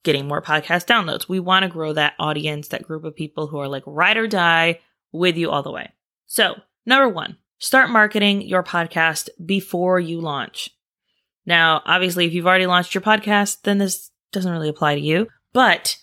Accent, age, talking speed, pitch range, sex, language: American, 20-39, 190 wpm, 160-225 Hz, female, English